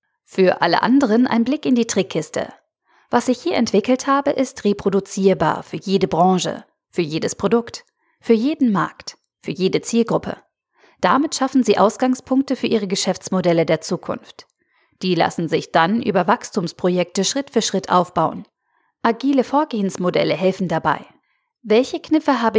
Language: German